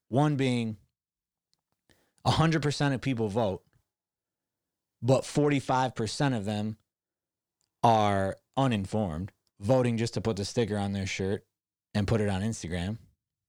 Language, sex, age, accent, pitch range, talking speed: English, male, 30-49, American, 105-145 Hz, 115 wpm